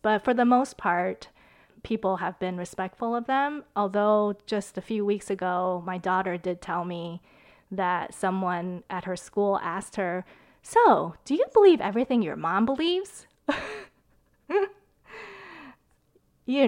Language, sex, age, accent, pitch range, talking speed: English, female, 20-39, American, 180-225 Hz, 135 wpm